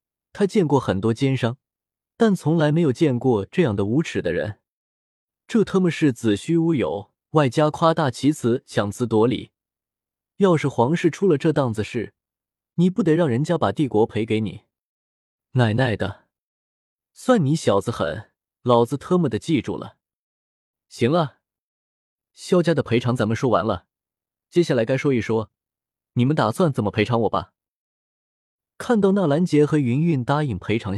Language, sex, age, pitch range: Chinese, male, 20-39, 105-160 Hz